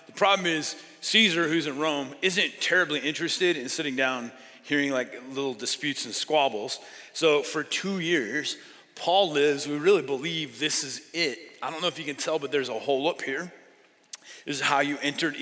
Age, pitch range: 30-49, 145-170 Hz